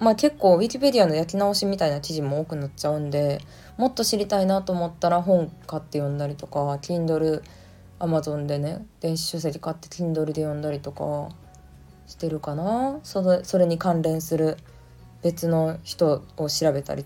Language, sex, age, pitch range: Japanese, female, 20-39, 145-175 Hz